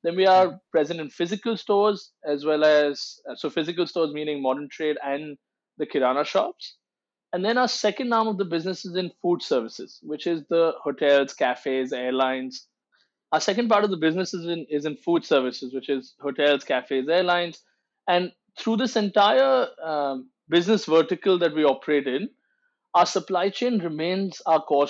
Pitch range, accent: 150-205 Hz, Indian